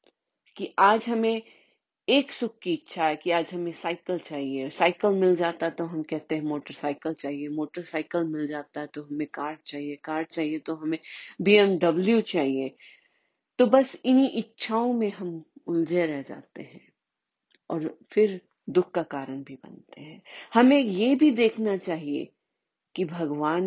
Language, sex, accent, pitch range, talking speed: Hindi, female, native, 150-210 Hz, 150 wpm